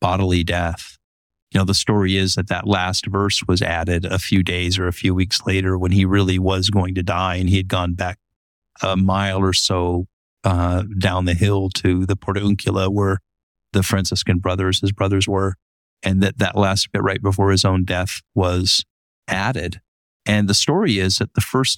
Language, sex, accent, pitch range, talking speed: English, male, American, 90-105 Hz, 195 wpm